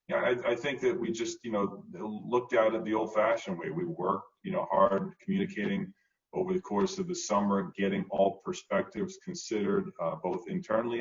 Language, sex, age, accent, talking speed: English, male, 40-59, American, 180 wpm